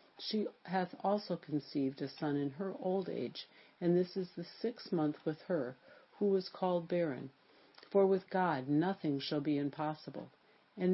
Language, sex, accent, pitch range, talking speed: English, female, American, 150-190 Hz, 165 wpm